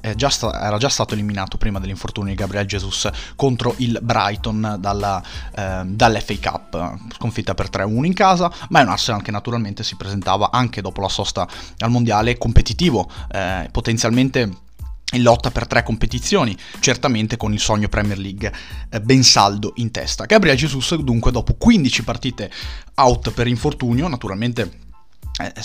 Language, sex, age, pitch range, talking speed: Italian, male, 20-39, 100-120 Hz, 150 wpm